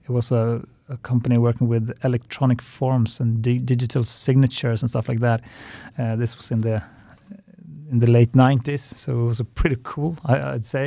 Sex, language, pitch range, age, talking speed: male, Swedish, 115-130 Hz, 30-49, 195 wpm